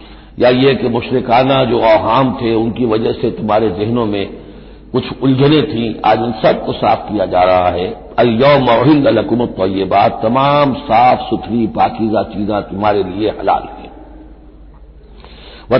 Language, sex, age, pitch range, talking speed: Hindi, male, 60-79, 105-145 Hz, 145 wpm